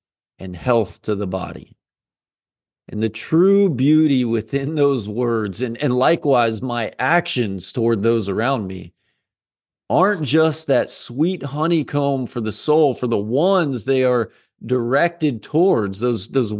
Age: 40-59